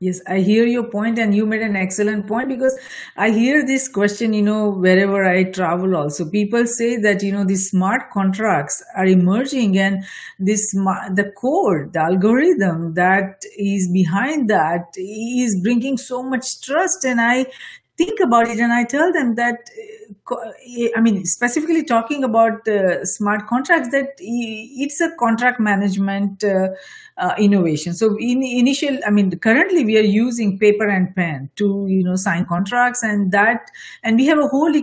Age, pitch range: 50-69, 200-260 Hz